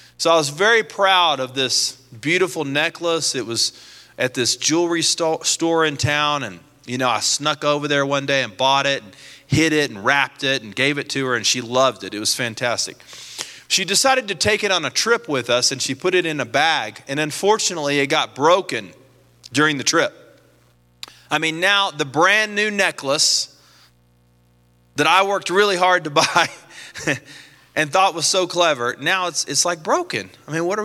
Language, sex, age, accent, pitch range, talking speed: English, male, 30-49, American, 120-160 Hz, 195 wpm